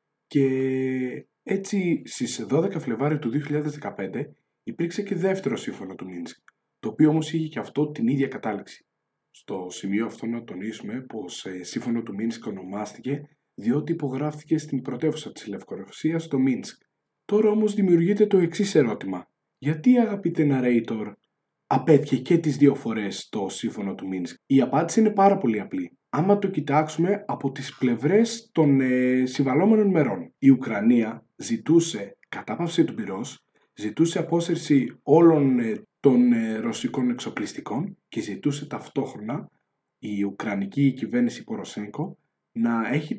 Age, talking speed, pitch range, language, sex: 20-39, 130 wpm, 125-175 Hz, Greek, male